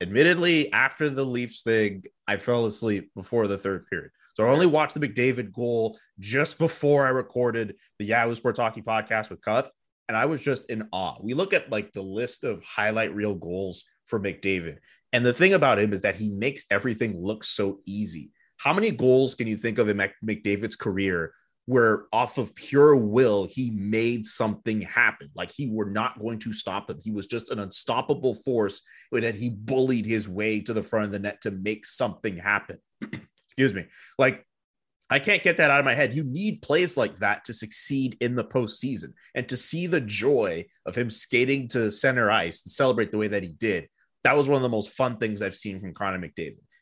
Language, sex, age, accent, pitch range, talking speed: English, male, 30-49, American, 105-130 Hz, 205 wpm